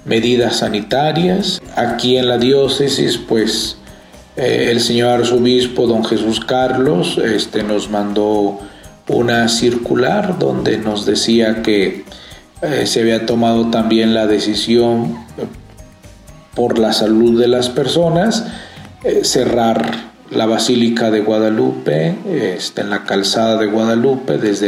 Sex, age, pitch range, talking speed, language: male, 40-59, 110-125 Hz, 120 wpm, Spanish